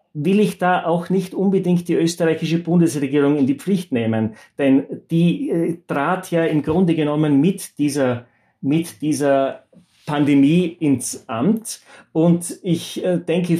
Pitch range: 130-175 Hz